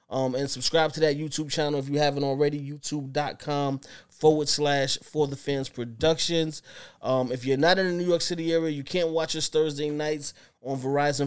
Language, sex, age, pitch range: English, male, 20-39, 135-155 Hz